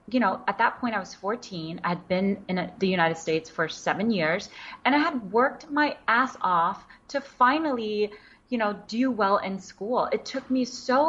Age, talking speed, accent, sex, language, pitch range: 30-49, 200 wpm, American, female, English, 175-225 Hz